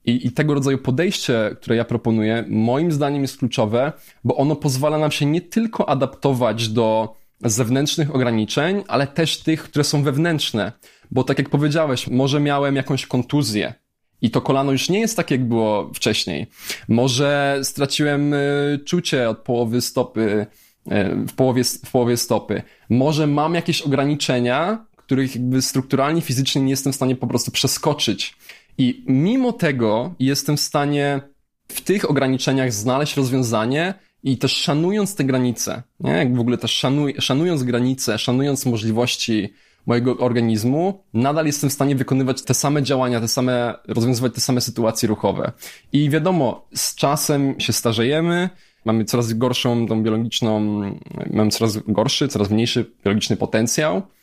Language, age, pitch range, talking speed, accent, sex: Polish, 20-39, 120-145 Hz, 150 wpm, native, male